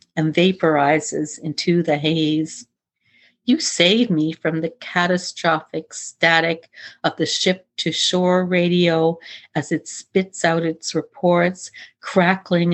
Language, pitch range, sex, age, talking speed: English, 155-180 Hz, female, 50-69, 110 wpm